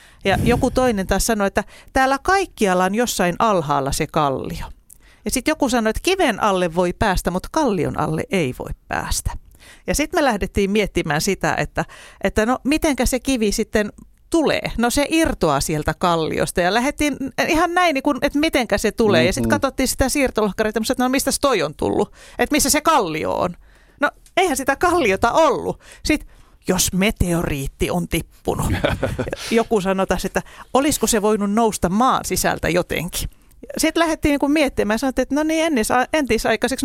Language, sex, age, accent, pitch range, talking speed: Finnish, female, 40-59, native, 185-265 Hz, 165 wpm